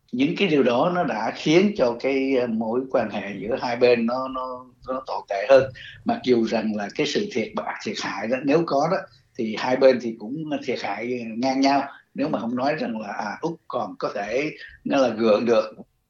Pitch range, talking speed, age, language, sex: 120-160 Hz, 215 wpm, 60-79, Vietnamese, male